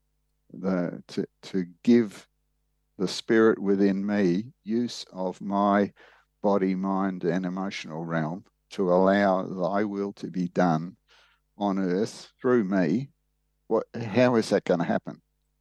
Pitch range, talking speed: 95-110 Hz, 130 wpm